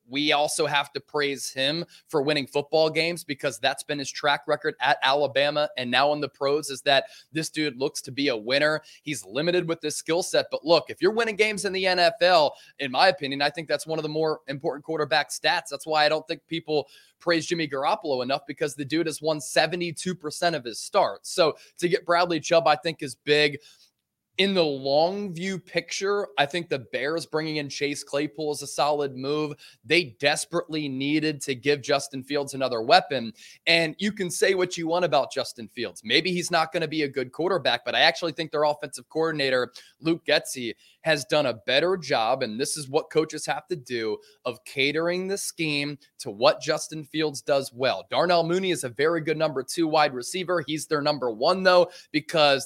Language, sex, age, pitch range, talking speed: English, male, 20-39, 140-170 Hz, 205 wpm